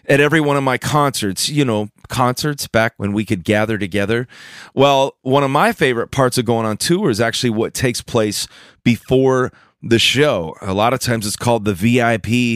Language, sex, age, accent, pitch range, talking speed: English, male, 30-49, American, 110-140 Hz, 195 wpm